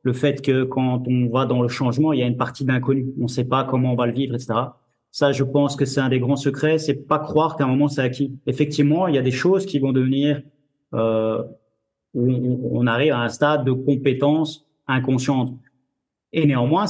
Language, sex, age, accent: French, male, 30-49, French